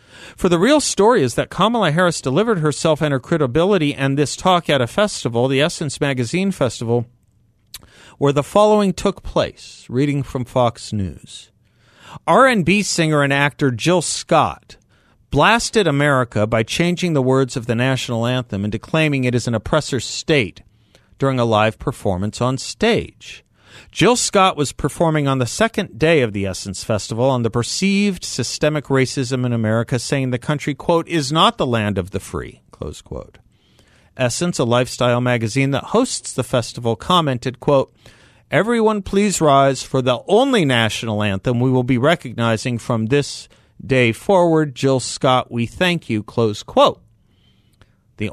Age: 50-69